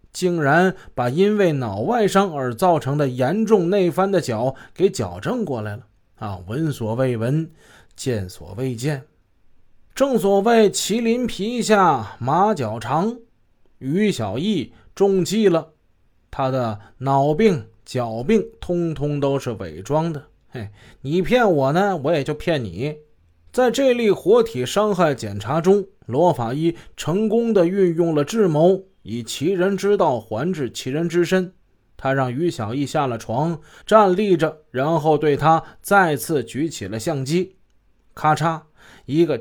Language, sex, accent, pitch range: Chinese, male, native, 130-190 Hz